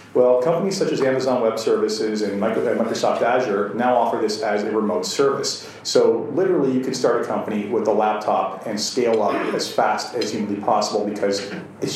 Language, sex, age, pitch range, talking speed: English, male, 40-59, 105-140 Hz, 185 wpm